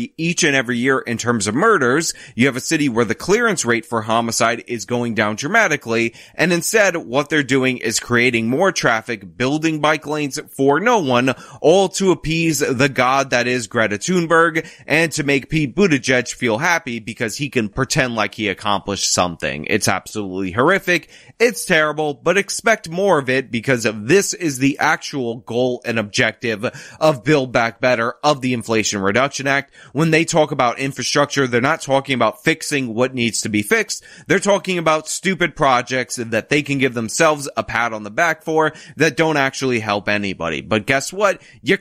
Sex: male